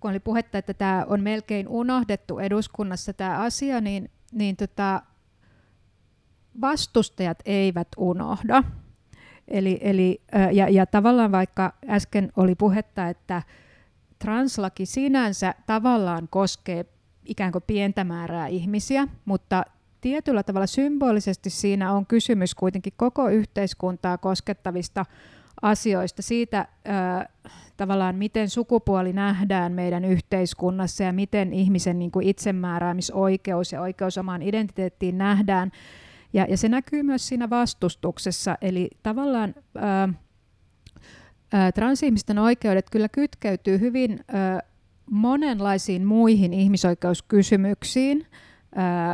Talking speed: 90 wpm